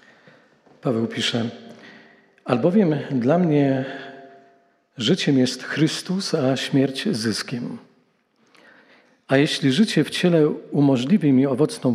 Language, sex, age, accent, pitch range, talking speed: Polish, male, 50-69, native, 130-165 Hz, 95 wpm